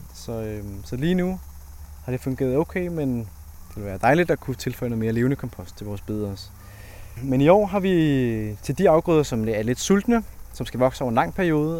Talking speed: 220 wpm